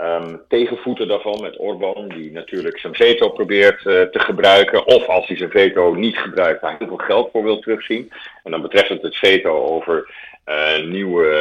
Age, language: 50-69, Dutch